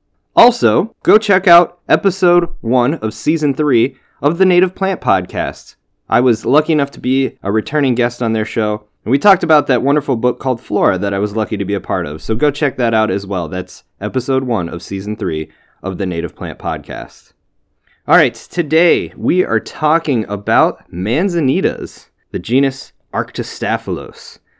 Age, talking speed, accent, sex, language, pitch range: 20-39, 180 wpm, American, male, English, 95-135 Hz